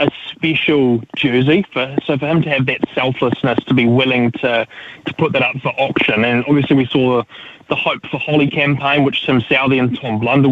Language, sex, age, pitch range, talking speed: English, male, 20-39, 125-150 Hz, 205 wpm